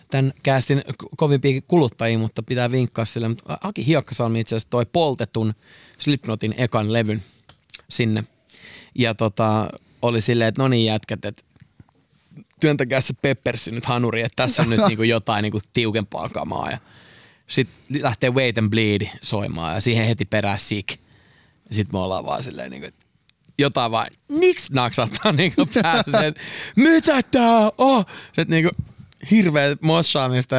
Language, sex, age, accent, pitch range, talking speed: Finnish, male, 20-39, native, 110-140 Hz, 140 wpm